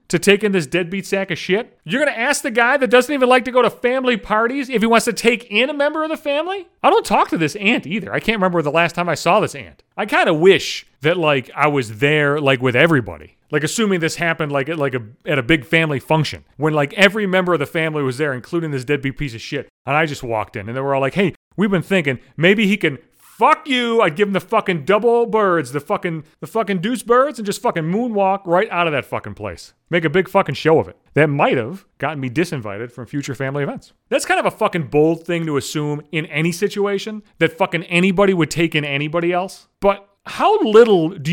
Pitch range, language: 150-225 Hz, English